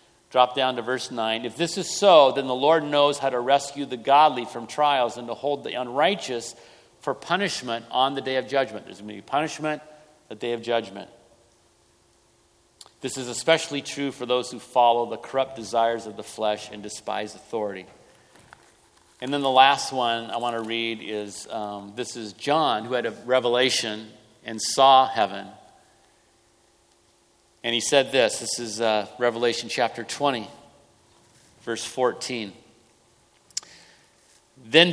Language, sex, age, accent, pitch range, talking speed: English, male, 50-69, American, 110-140 Hz, 160 wpm